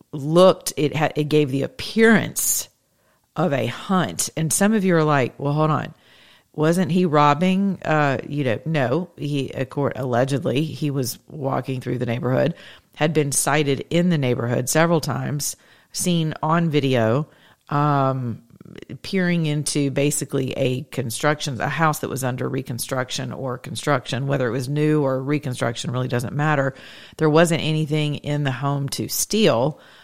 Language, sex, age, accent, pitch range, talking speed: English, female, 40-59, American, 135-170 Hz, 155 wpm